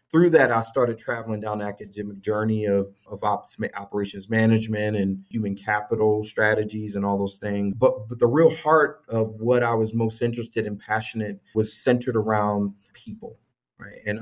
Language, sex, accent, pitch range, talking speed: English, male, American, 105-130 Hz, 170 wpm